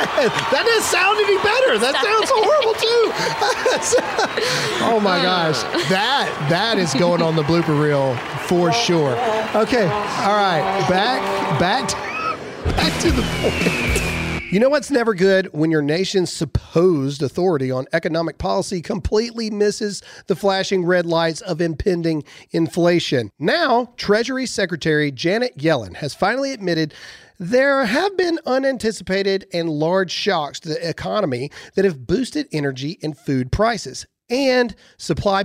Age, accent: 40-59, American